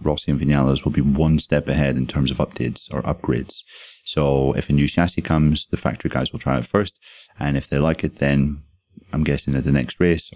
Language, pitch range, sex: English, 70-85 Hz, male